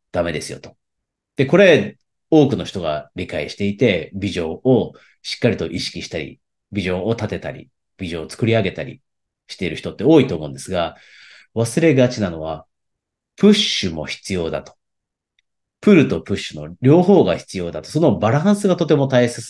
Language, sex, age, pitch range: Japanese, male, 40-59, 90-120 Hz